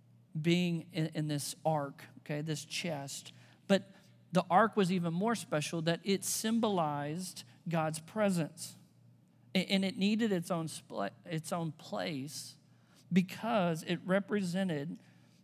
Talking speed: 125 wpm